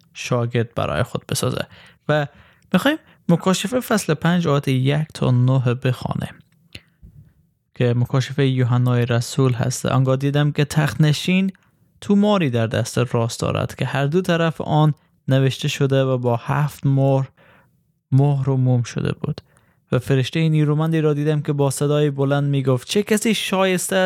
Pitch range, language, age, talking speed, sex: 130-165 Hz, Persian, 20-39, 145 wpm, male